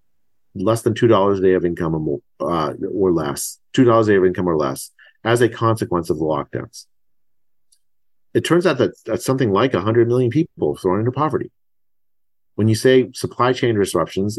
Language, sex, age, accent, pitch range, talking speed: English, male, 40-59, American, 90-115 Hz, 185 wpm